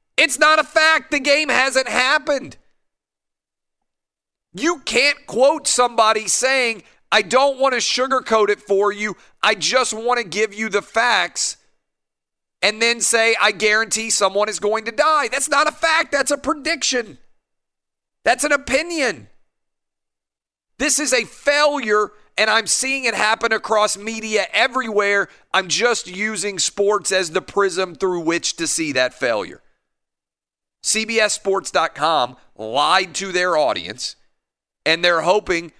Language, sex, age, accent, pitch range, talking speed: English, male, 40-59, American, 175-250 Hz, 135 wpm